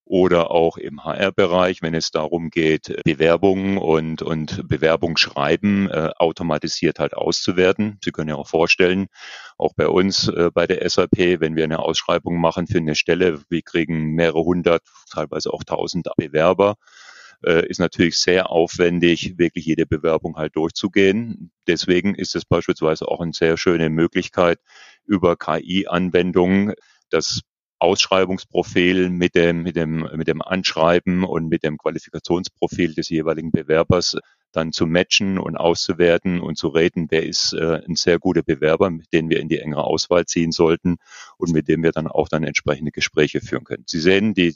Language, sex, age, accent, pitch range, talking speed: English, male, 40-59, German, 80-90 Hz, 160 wpm